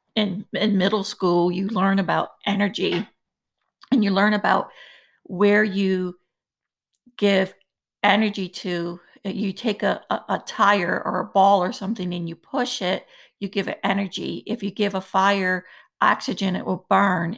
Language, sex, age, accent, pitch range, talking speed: English, female, 50-69, American, 190-220 Hz, 155 wpm